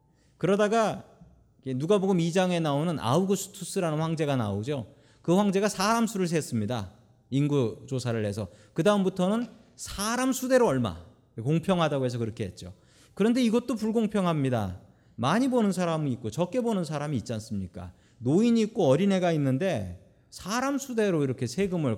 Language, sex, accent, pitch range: Korean, male, native, 130-210 Hz